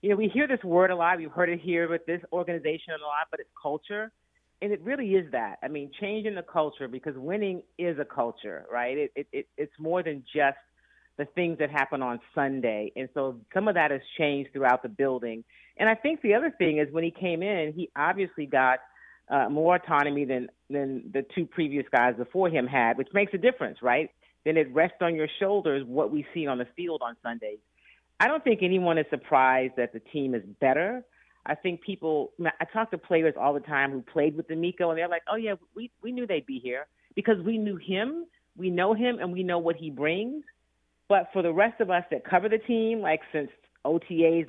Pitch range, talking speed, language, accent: 140-190 Hz, 225 wpm, English, American